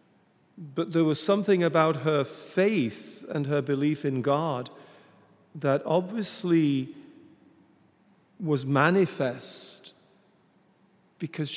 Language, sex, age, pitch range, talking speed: English, male, 40-59, 140-185 Hz, 90 wpm